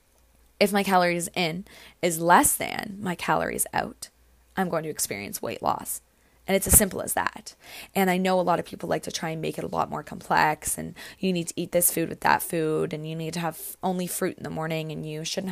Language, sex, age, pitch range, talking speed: English, female, 20-39, 160-190 Hz, 240 wpm